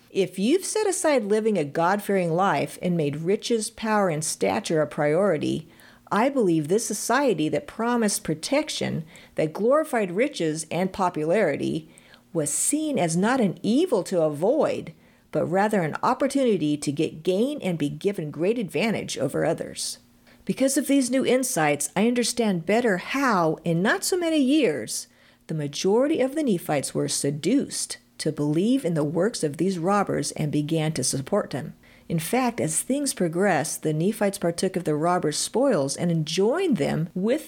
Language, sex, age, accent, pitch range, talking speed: English, female, 50-69, American, 155-235 Hz, 160 wpm